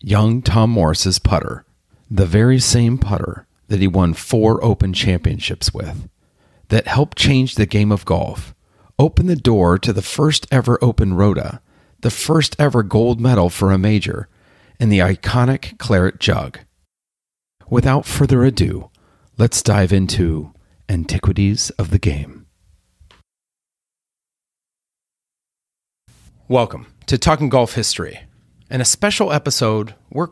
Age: 40-59